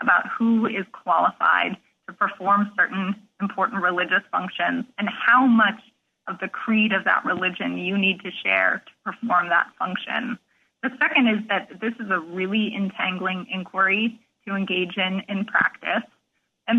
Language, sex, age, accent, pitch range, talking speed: English, female, 20-39, American, 195-225 Hz, 155 wpm